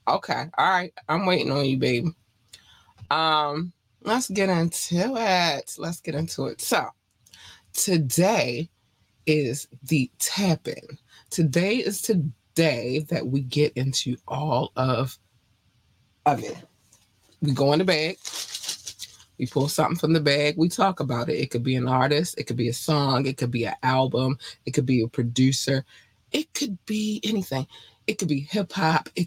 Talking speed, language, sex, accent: 160 wpm, English, female, American